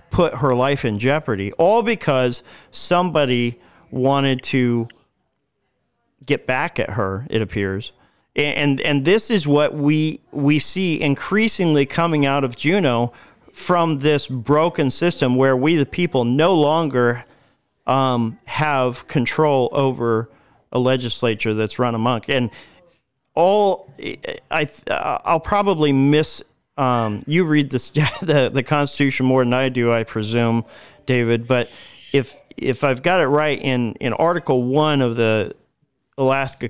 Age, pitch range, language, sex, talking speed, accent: 40-59, 115-150 Hz, English, male, 135 wpm, American